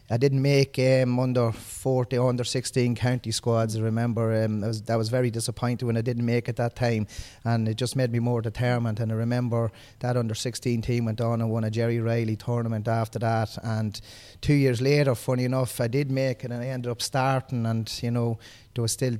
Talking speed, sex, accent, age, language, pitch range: 225 wpm, male, Irish, 20-39, English, 110-120 Hz